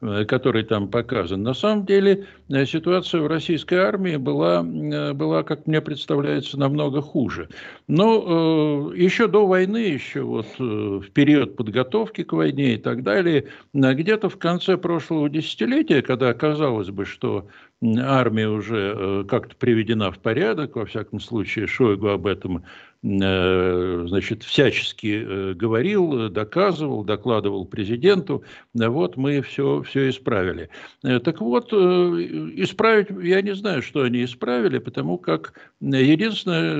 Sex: male